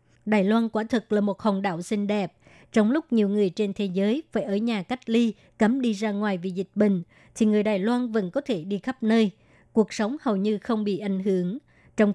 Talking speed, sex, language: 235 wpm, male, Vietnamese